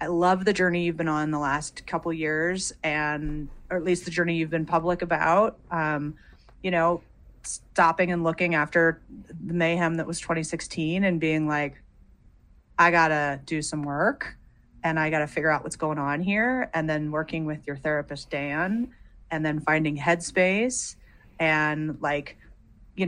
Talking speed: 170 wpm